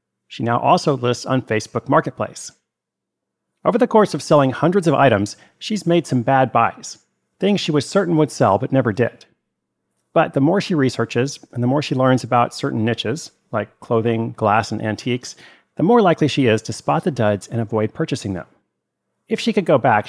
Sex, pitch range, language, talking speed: male, 110-150 Hz, English, 195 wpm